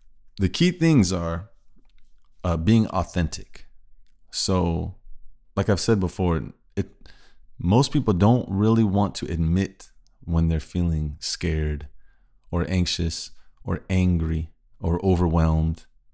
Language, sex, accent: English, male, American